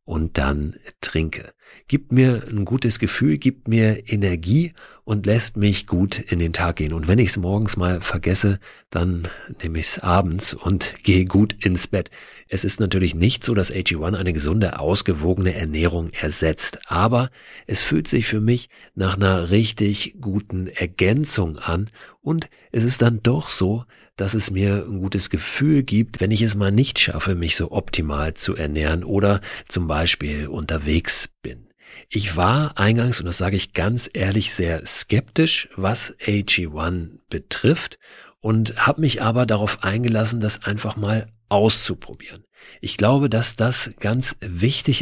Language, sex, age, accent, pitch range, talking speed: German, male, 50-69, German, 90-115 Hz, 160 wpm